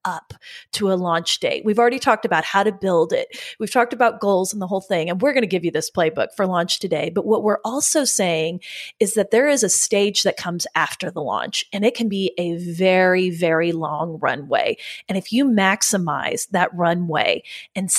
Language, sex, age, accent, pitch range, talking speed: English, female, 30-49, American, 175-215 Hz, 215 wpm